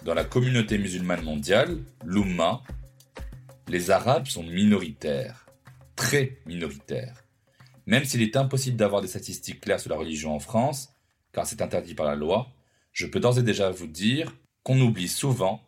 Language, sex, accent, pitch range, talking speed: French, male, French, 95-130 Hz, 155 wpm